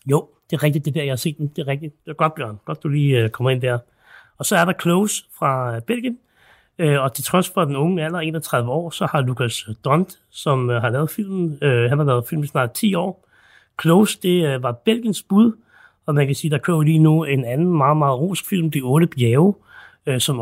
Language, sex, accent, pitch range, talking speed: Danish, male, native, 130-170 Hz, 225 wpm